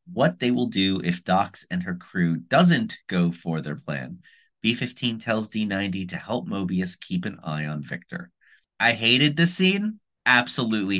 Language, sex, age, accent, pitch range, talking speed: English, male, 30-49, American, 110-170 Hz, 175 wpm